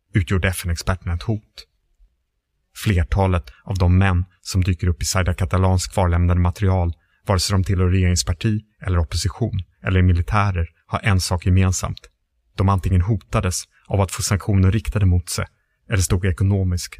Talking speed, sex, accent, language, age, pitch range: 150 wpm, male, Norwegian, English, 30-49, 90-100 Hz